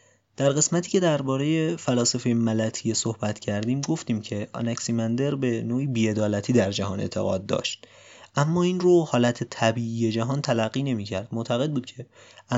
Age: 30-49